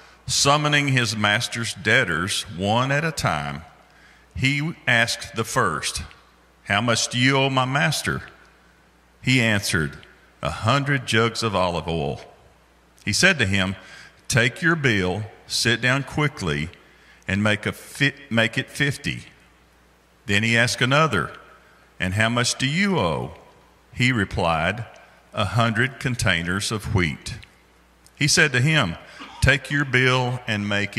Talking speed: 135 wpm